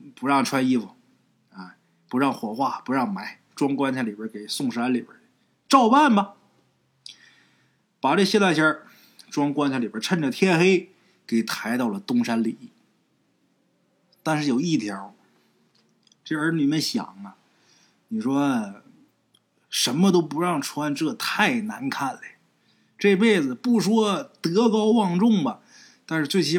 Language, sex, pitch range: Chinese, male, 155-240 Hz